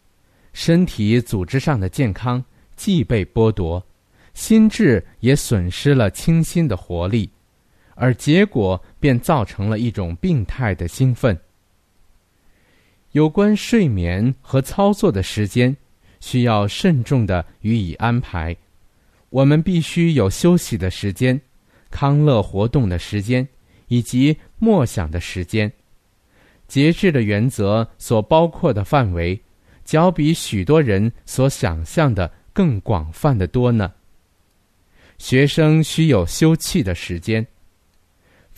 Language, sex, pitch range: Chinese, male, 95-140 Hz